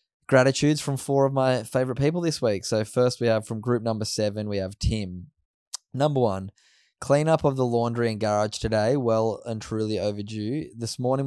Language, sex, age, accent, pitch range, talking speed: English, male, 10-29, Australian, 105-125 Hz, 190 wpm